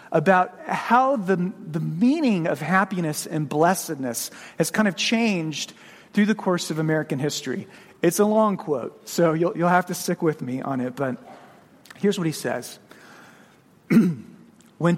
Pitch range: 160-210 Hz